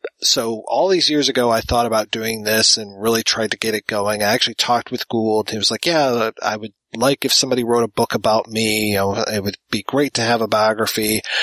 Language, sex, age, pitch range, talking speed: English, male, 30-49, 110-130 Hz, 240 wpm